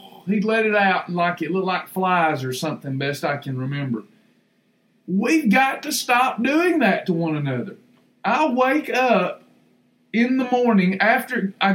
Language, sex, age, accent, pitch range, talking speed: English, male, 50-69, American, 220-330 Hz, 165 wpm